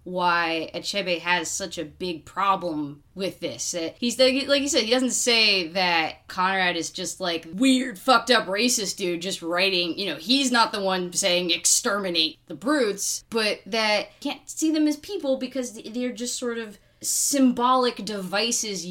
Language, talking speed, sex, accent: English, 170 wpm, female, American